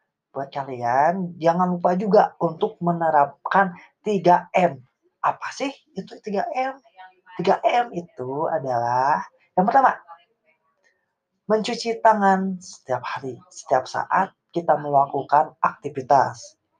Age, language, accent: 20-39, Indonesian, native